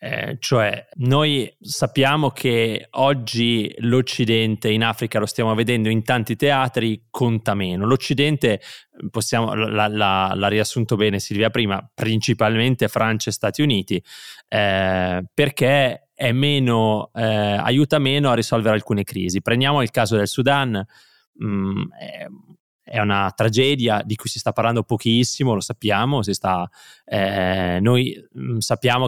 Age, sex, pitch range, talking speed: 20-39, male, 110-130 Hz, 130 wpm